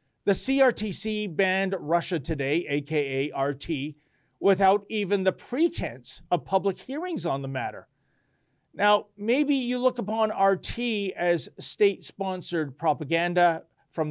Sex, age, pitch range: male, 40-59, 155-215 Hz